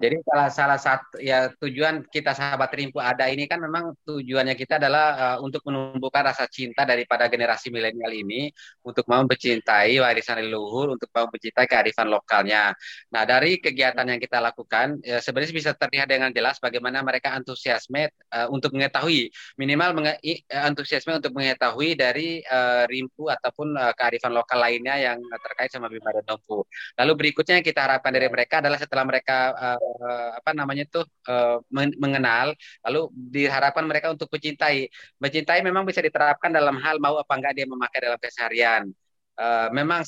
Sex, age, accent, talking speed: male, 20-39, native, 160 wpm